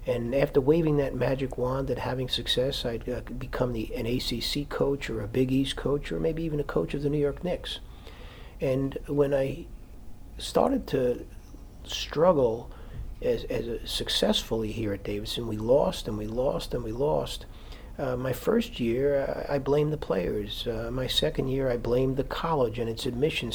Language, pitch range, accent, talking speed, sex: English, 110-135 Hz, American, 180 wpm, male